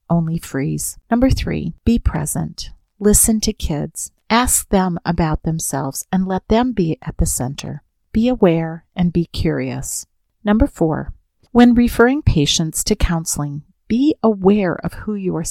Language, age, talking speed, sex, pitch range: English, 40-59, 145 wpm, female, 155-200 Hz